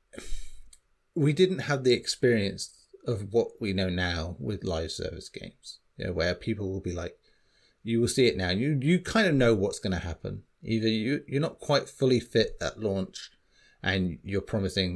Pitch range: 95-130 Hz